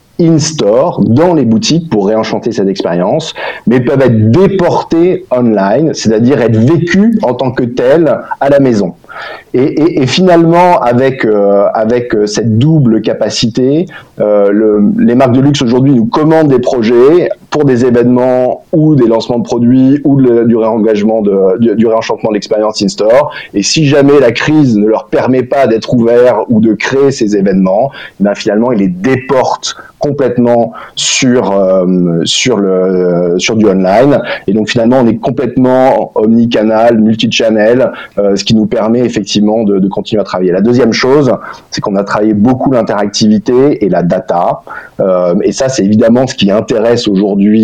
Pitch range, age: 105-130 Hz, 30-49